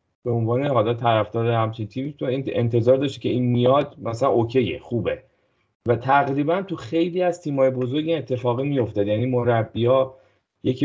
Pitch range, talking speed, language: 95-125 Hz, 160 wpm, Persian